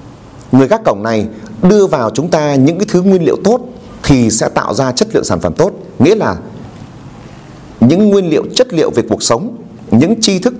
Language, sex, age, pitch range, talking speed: Vietnamese, male, 30-49, 125-185 Hz, 205 wpm